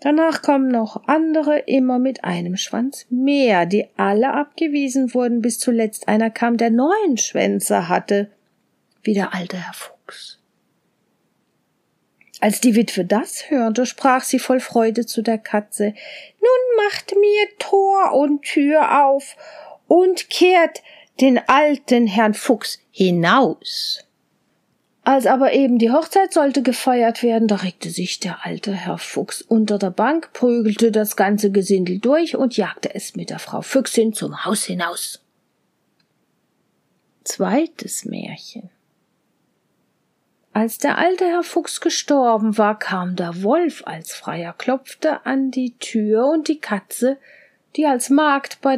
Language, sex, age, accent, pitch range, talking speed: German, female, 50-69, German, 215-285 Hz, 135 wpm